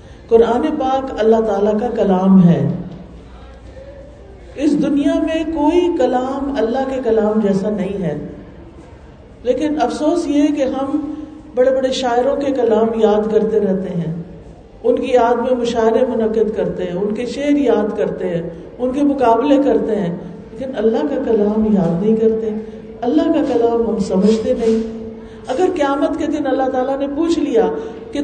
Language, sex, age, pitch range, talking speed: Urdu, female, 50-69, 210-290 Hz, 160 wpm